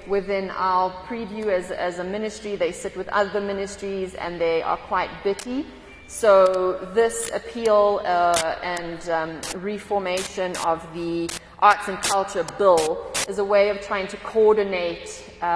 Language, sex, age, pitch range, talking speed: English, female, 30-49, 170-195 Hz, 145 wpm